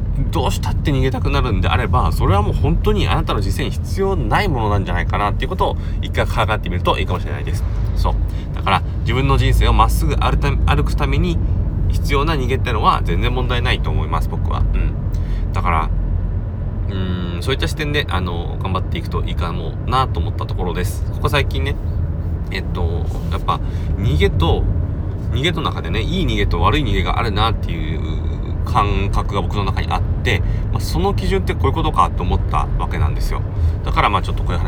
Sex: male